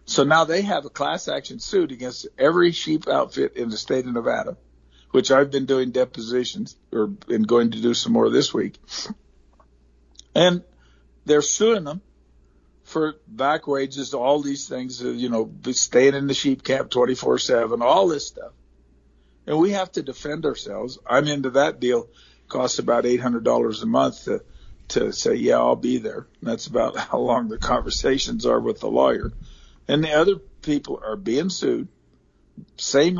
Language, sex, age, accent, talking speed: English, male, 50-69, American, 175 wpm